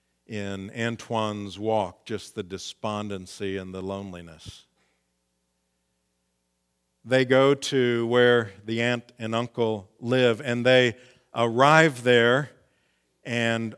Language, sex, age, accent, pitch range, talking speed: English, male, 50-69, American, 95-135 Hz, 100 wpm